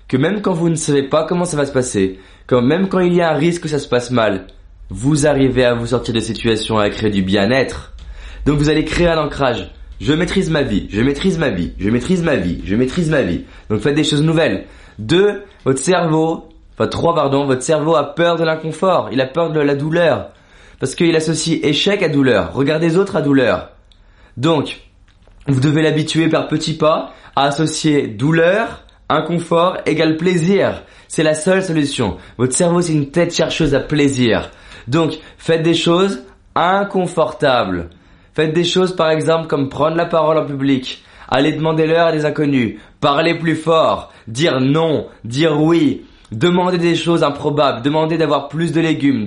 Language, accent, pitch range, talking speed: French, French, 130-165 Hz, 195 wpm